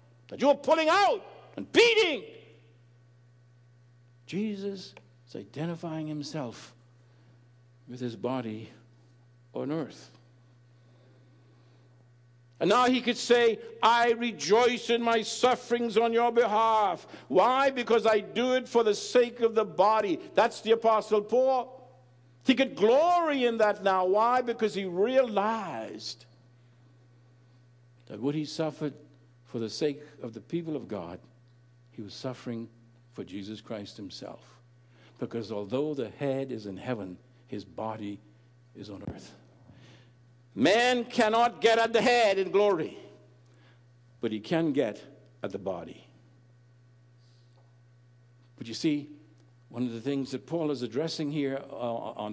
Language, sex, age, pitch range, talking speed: English, male, 60-79, 120-205 Hz, 130 wpm